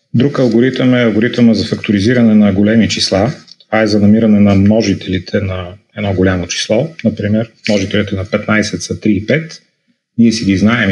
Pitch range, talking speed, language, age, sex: 100-115 Hz, 170 wpm, Bulgarian, 30-49, male